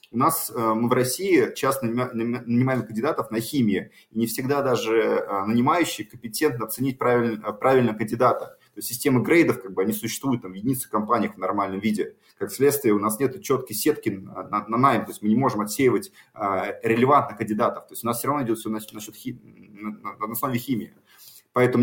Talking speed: 185 wpm